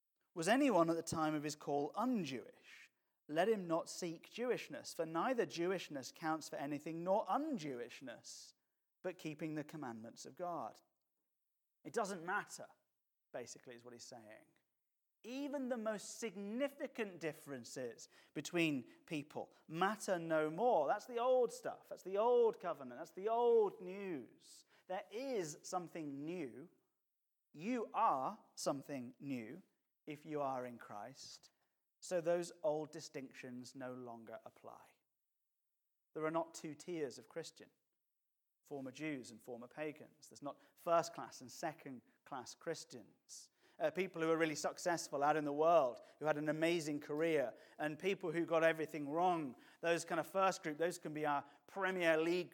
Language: English